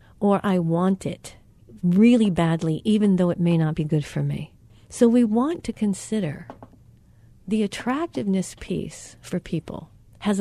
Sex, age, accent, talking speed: female, 50-69, American, 150 wpm